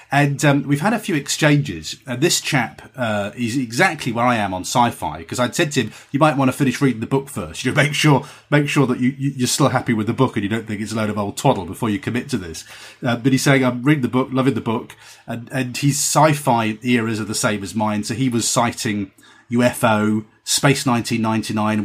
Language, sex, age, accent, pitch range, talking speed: English, male, 30-49, British, 105-135 Hz, 240 wpm